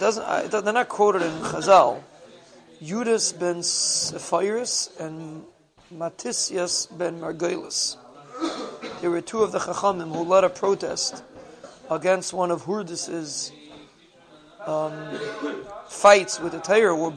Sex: male